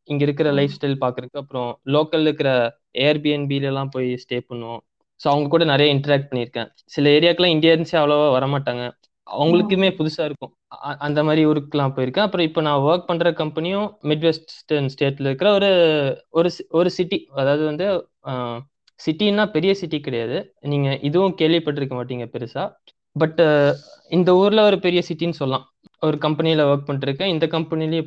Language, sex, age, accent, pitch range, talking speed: Tamil, male, 20-39, native, 135-165 Hz, 150 wpm